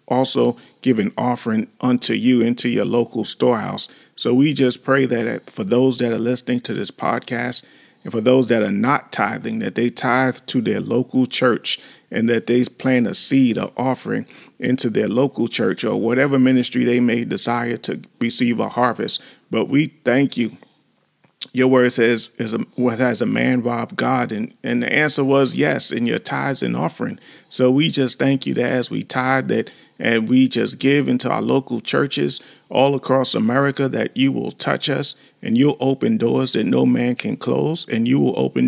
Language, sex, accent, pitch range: English, male, American, 120-135 Hz